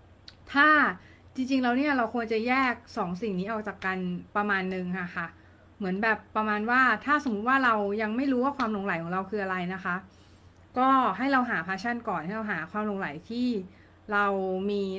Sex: female